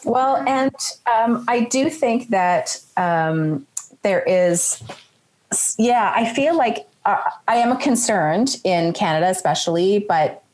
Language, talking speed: English, 130 wpm